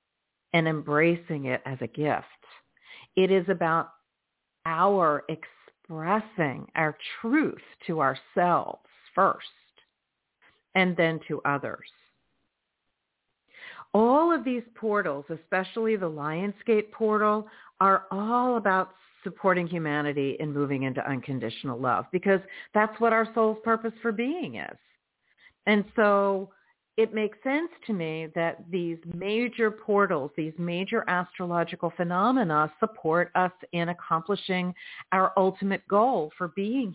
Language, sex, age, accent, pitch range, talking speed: English, female, 50-69, American, 160-210 Hz, 115 wpm